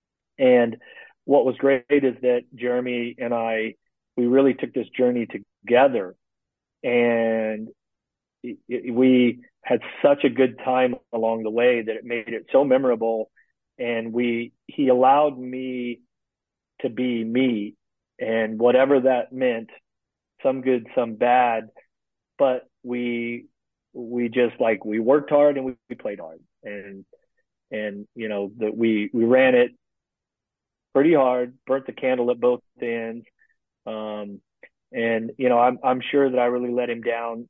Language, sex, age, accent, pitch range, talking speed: English, male, 40-59, American, 110-125 Hz, 145 wpm